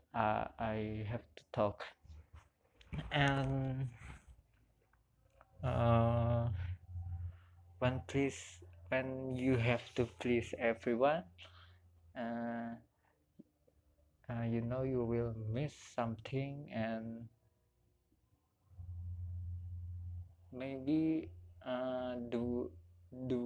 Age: 20-39